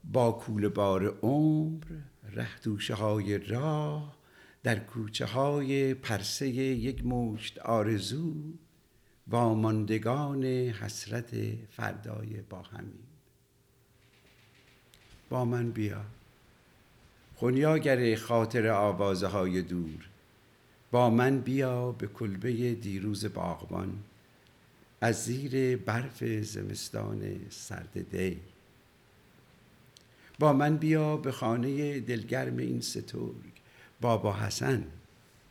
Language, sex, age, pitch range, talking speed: English, male, 60-79, 105-135 Hz, 85 wpm